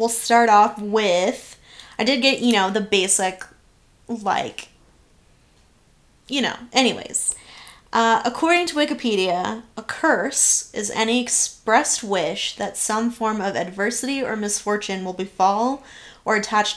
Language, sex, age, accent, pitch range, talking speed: English, female, 10-29, American, 200-230 Hz, 130 wpm